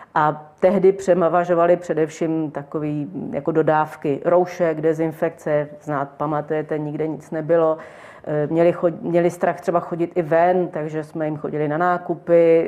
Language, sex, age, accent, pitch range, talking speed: Czech, female, 40-59, native, 155-180 Hz, 130 wpm